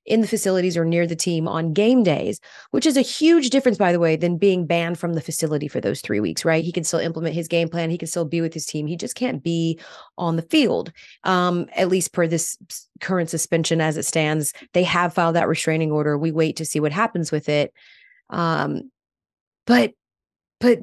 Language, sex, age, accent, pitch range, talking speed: English, female, 30-49, American, 160-210 Hz, 220 wpm